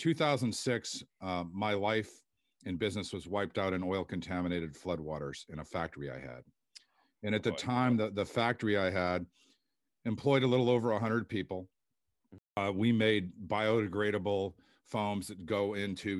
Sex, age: male, 50-69